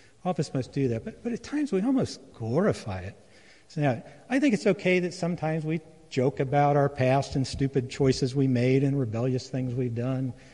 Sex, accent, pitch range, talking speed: male, American, 120-150 Hz, 215 wpm